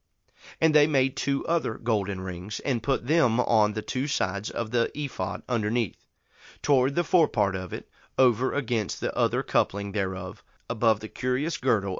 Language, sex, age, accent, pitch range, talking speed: English, male, 40-59, American, 100-130 Hz, 165 wpm